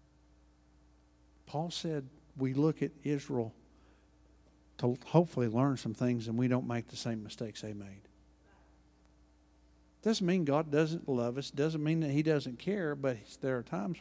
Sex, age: male, 50-69